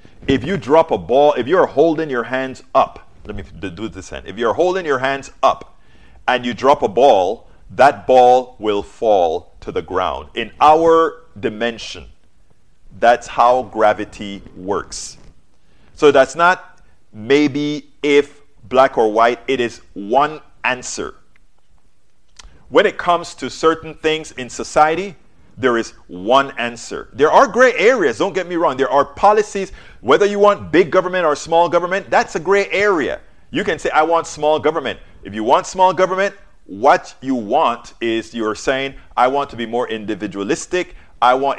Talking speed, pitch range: 165 wpm, 115-165 Hz